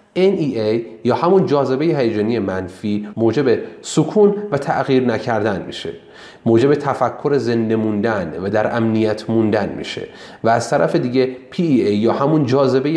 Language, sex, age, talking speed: Persian, male, 30-49, 135 wpm